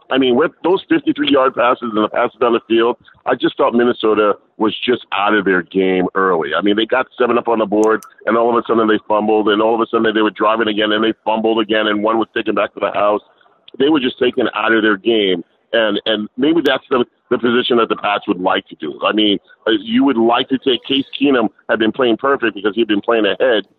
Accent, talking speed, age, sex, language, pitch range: American, 250 wpm, 40-59, male, English, 110-135 Hz